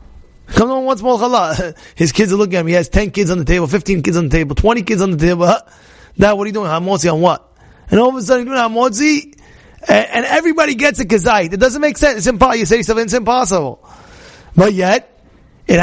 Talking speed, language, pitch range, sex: 240 wpm, English, 170-245 Hz, male